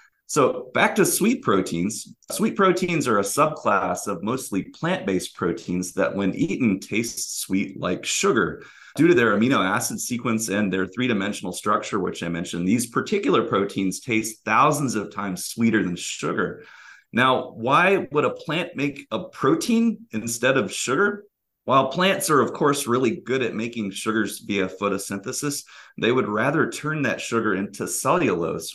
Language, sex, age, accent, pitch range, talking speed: English, male, 30-49, American, 95-130 Hz, 155 wpm